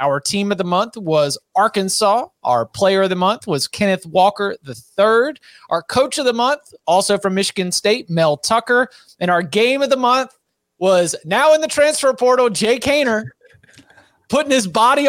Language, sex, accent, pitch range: English, male, American, 160-220 Hz